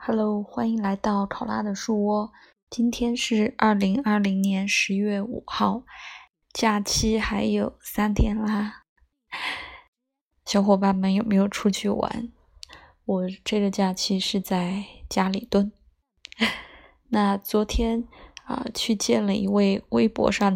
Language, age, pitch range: Chinese, 20-39, 190-215 Hz